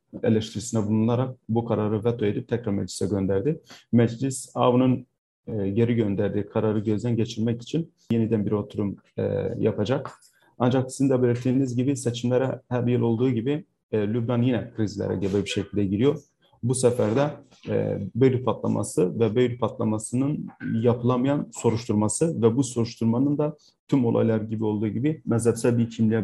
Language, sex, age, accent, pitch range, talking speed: Turkish, male, 40-59, native, 110-125 Hz, 145 wpm